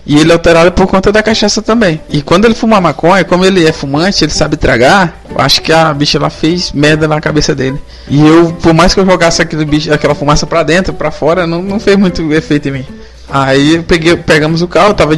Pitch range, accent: 150-175 Hz, Brazilian